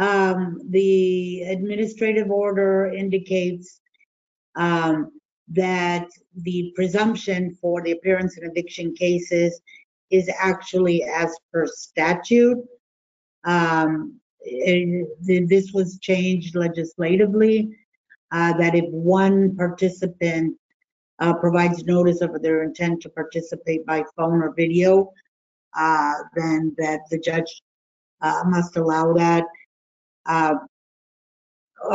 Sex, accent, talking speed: female, American, 100 wpm